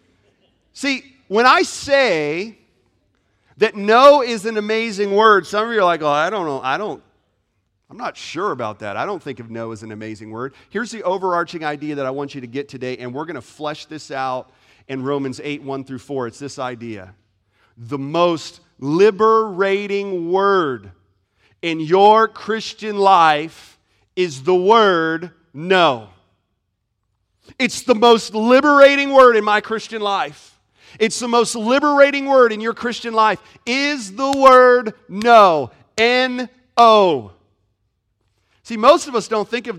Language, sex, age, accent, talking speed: English, male, 40-59, American, 160 wpm